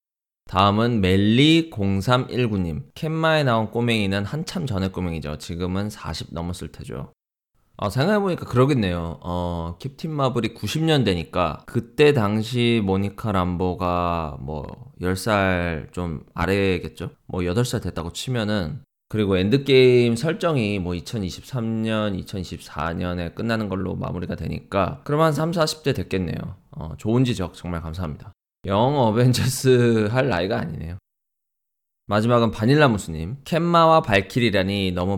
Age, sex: 20-39, male